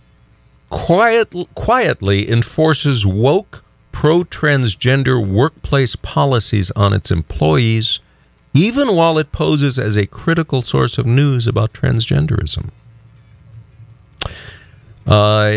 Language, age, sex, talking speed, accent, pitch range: English, 50-69, male, 90 wpm, American, 100-135 Hz